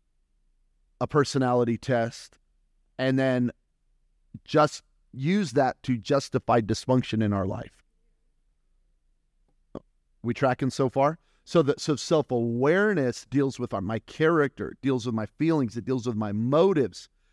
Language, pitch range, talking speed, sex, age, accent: English, 110-135 Hz, 130 wpm, male, 30-49, American